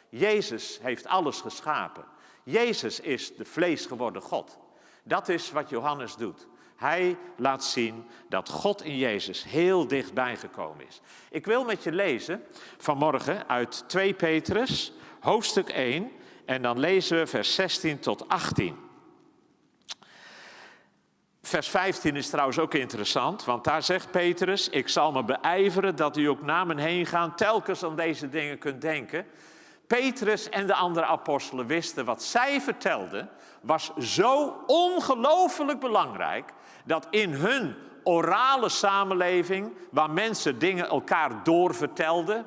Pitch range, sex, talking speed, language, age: 140-195 Hz, male, 135 wpm, Dutch, 50-69